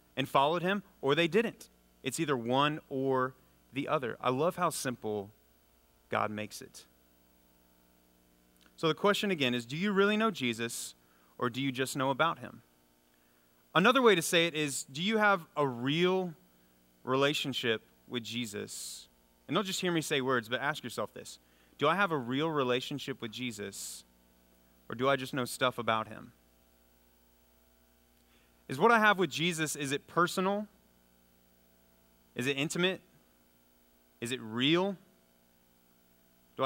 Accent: American